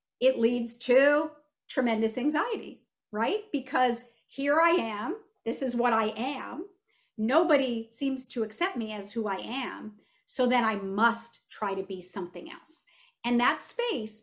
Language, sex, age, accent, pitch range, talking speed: English, female, 50-69, American, 220-265 Hz, 150 wpm